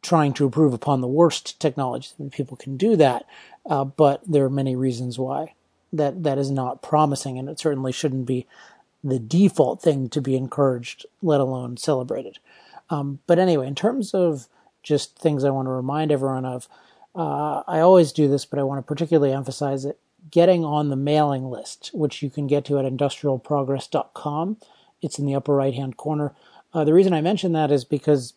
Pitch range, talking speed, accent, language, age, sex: 135-155 Hz, 195 wpm, American, English, 40-59, male